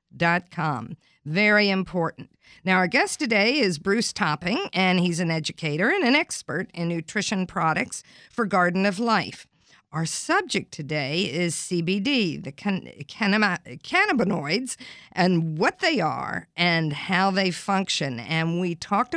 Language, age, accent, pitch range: English, 50-69, American, 165-215 Hz